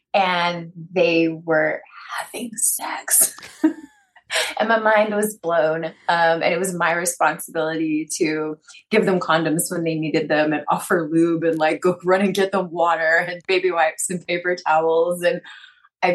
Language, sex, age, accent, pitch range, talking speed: English, female, 20-39, American, 160-185 Hz, 160 wpm